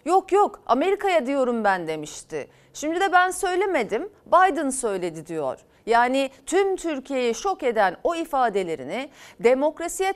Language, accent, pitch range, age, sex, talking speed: Turkish, native, 235-320 Hz, 40-59, female, 125 wpm